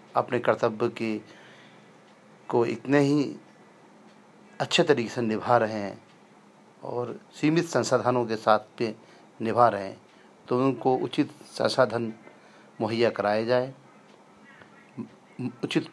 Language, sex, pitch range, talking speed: Hindi, male, 115-145 Hz, 110 wpm